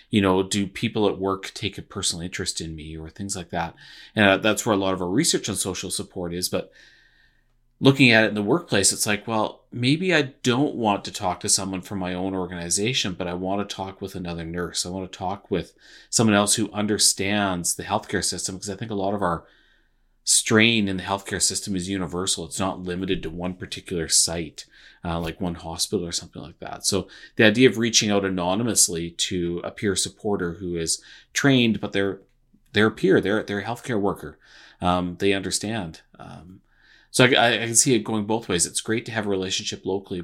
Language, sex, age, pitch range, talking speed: English, male, 30-49, 90-105 Hz, 215 wpm